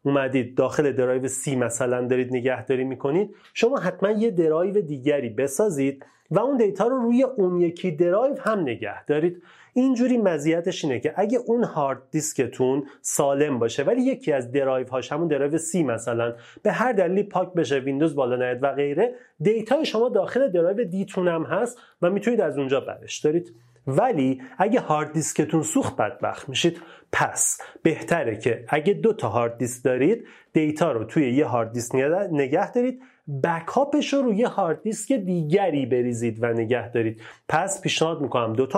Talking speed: 165 wpm